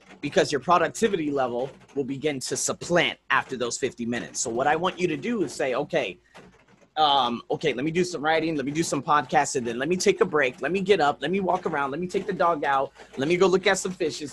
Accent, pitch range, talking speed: American, 145-185 Hz, 250 wpm